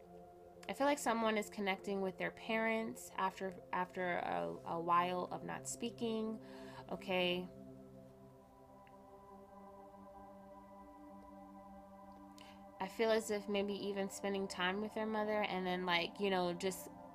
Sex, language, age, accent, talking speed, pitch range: female, English, 20-39, American, 120 wpm, 155-195 Hz